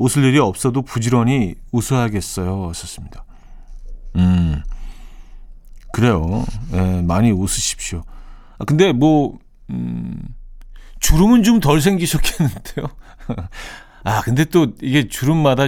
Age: 40-59